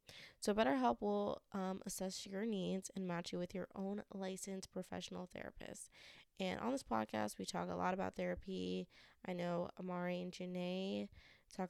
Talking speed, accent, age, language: 165 wpm, American, 20-39, English